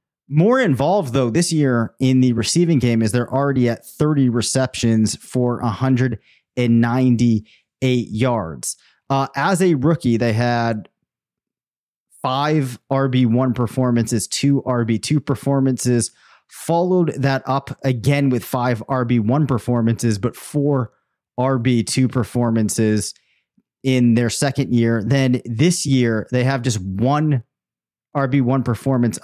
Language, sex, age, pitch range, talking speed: English, male, 30-49, 115-140 Hz, 115 wpm